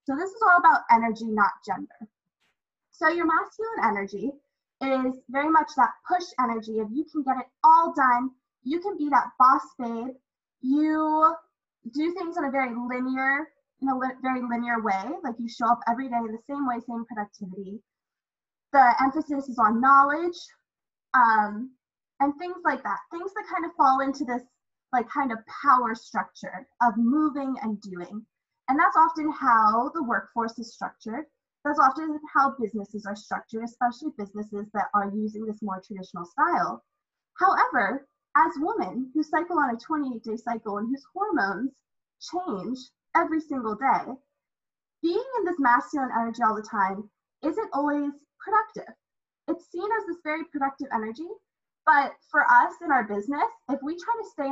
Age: 10-29